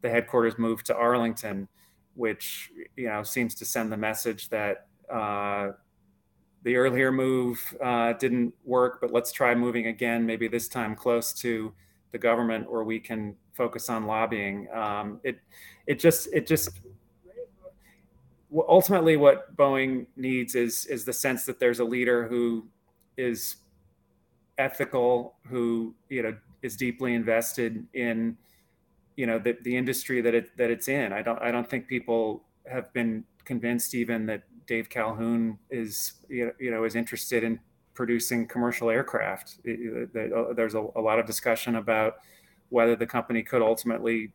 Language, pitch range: English, 110-120 Hz